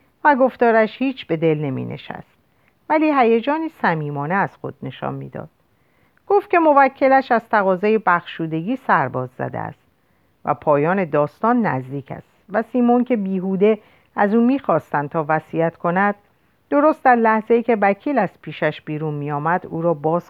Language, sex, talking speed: Persian, female, 150 wpm